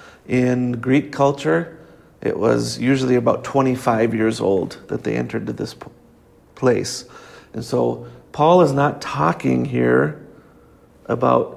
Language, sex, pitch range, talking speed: English, male, 110-140 Hz, 125 wpm